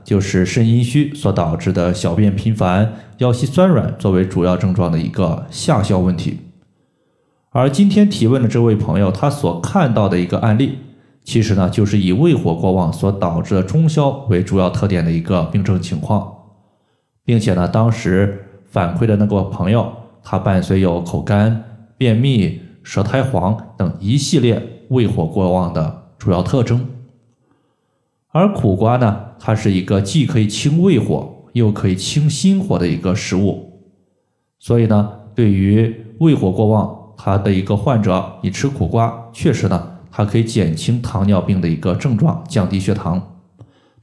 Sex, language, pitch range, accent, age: male, Chinese, 95-125 Hz, native, 20-39